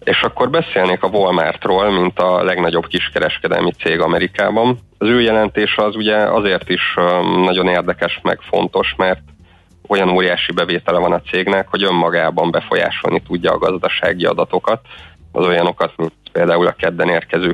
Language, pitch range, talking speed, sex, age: Hungarian, 90-100 Hz, 145 wpm, male, 30-49